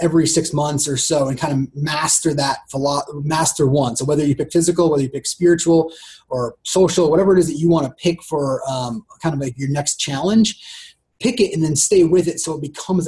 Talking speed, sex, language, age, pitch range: 225 wpm, male, English, 30-49, 145-185 Hz